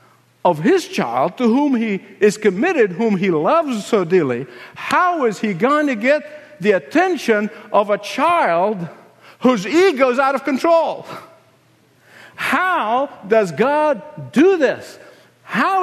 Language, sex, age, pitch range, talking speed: English, male, 60-79, 205-290 Hz, 135 wpm